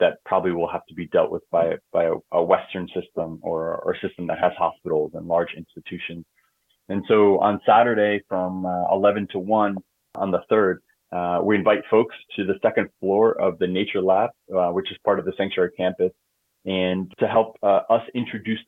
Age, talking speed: 30-49, 195 wpm